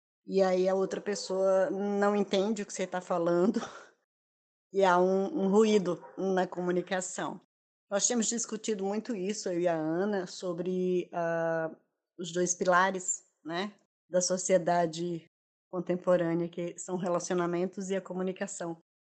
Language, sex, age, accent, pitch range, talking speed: Portuguese, female, 20-39, Brazilian, 175-195 Hz, 135 wpm